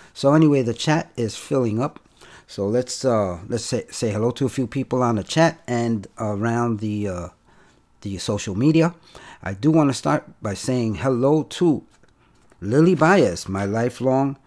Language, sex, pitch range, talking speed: Spanish, male, 105-140 Hz, 170 wpm